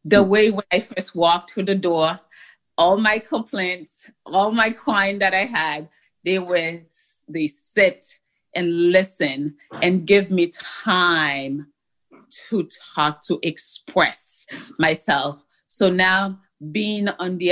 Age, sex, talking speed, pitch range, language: 30-49, female, 130 wpm, 160-195 Hz, English